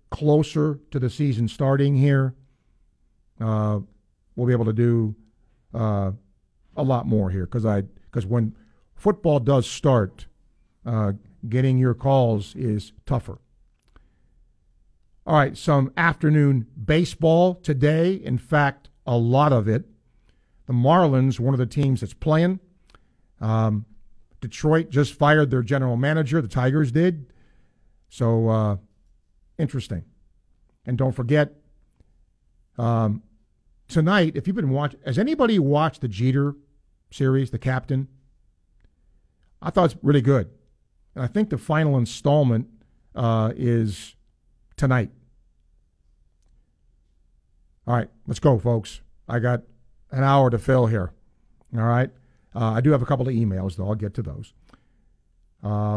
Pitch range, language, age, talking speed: 105-140 Hz, English, 50-69, 130 wpm